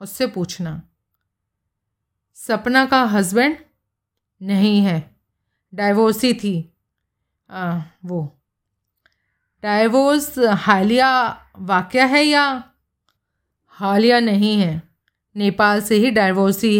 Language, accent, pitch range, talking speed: Hindi, native, 175-240 Hz, 80 wpm